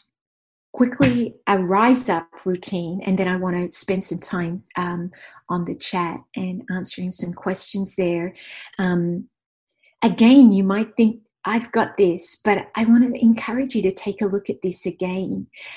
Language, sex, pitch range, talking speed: English, female, 180-220 Hz, 160 wpm